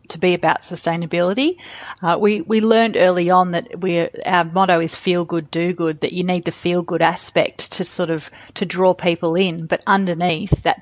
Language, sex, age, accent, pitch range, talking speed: English, female, 30-49, Australian, 170-190 Hz, 200 wpm